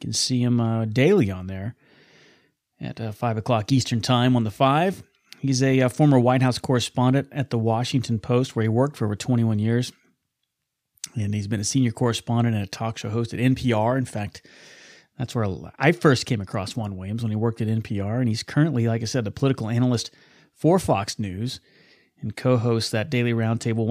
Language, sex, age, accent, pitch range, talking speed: English, male, 30-49, American, 110-130 Hz, 200 wpm